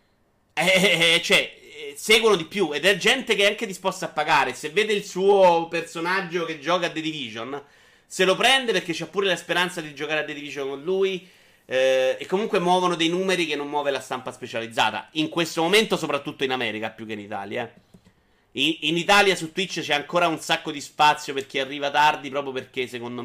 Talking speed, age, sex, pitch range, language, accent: 210 wpm, 30-49, male, 130-170 Hz, Italian, native